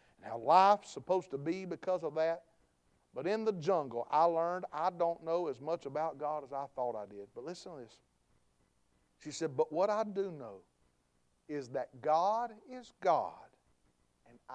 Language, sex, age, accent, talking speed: English, male, 50-69, American, 175 wpm